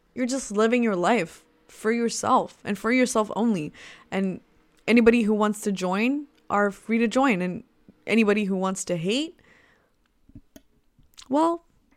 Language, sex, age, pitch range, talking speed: English, female, 20-39, 185-245 Hz, 140 wpm